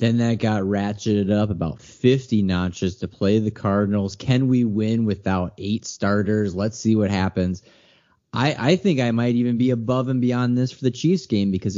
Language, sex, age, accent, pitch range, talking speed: English, male, 30-49, American, 95-120 Hz, 195 wpm